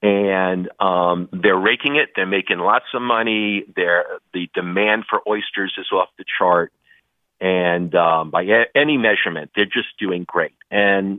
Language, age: English, 50-69